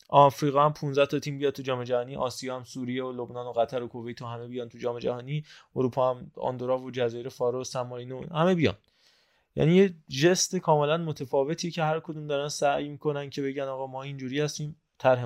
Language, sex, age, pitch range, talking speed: Persian, male, 20-39, 120-150 Hz, 205 wpm